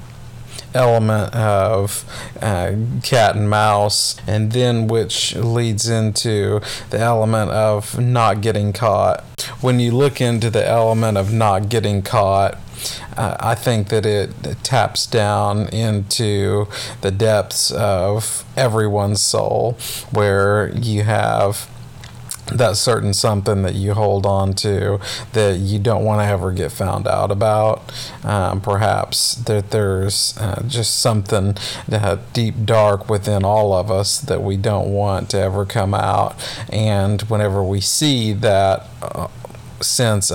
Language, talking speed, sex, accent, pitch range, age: English, 130 wpm, male, American, 100-115 Hz, 40-59